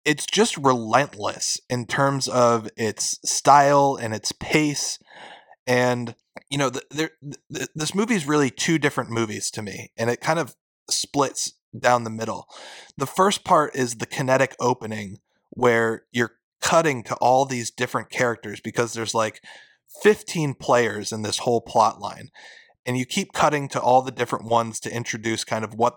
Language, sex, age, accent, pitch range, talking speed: English, male, 20-39, American, 115-140 Hz, 160 wpm